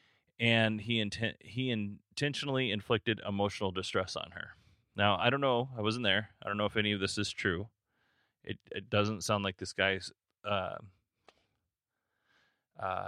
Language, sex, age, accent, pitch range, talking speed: English, male, 30-49, American, 95-115 Hz, 160 wpm